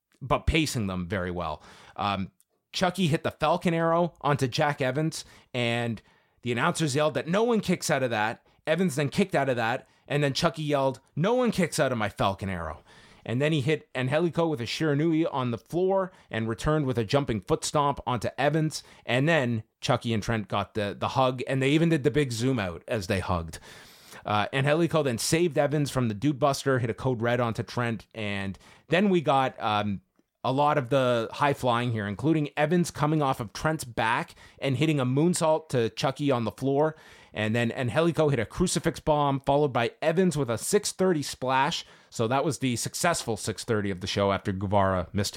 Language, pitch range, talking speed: English, 115-155 Hz, 200 wpm